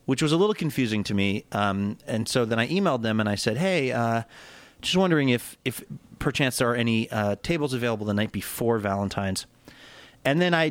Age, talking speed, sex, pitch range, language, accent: 30-49, 205 wpm, male, 110-150 Hz, English, American